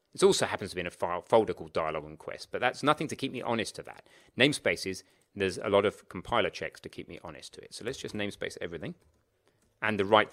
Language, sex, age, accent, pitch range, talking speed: English, male, 30-49, British, 95-120 Hz, 250 wpm